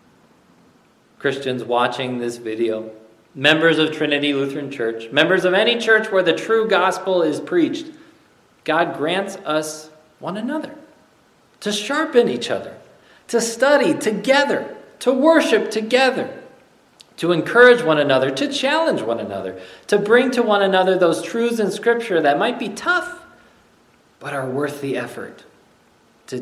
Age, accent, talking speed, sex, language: 40-59, American, 140 wpm, male, English